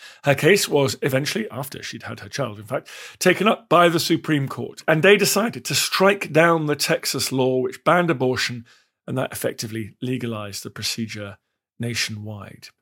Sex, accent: male, British